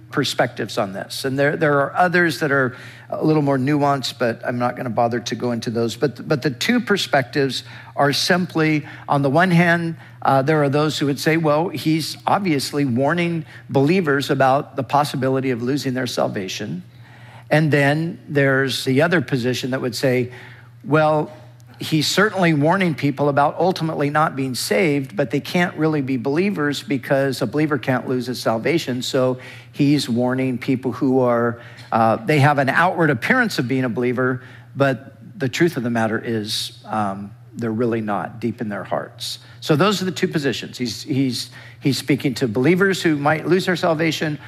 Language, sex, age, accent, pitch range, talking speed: English, male, 50-69, American, 120-150 Hz, 180 wpm